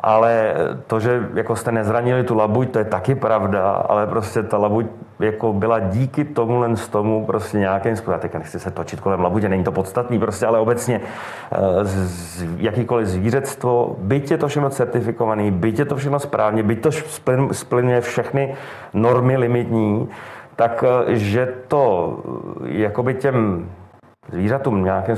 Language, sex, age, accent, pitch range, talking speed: Czech, male, 40-59, native, 105-125 Hz, 155 wpm